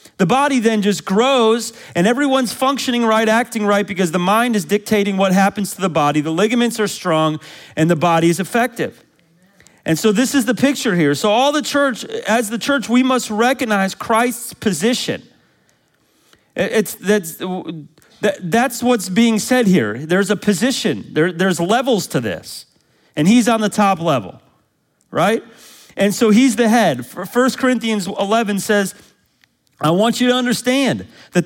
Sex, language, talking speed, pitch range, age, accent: male, English, 160 wpm, 185-235 Hz, 40-59, American